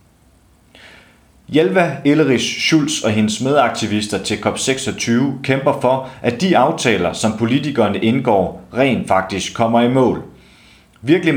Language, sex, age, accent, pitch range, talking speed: Danish, male, 30-49, native, 105-135 Hz, 115 wpm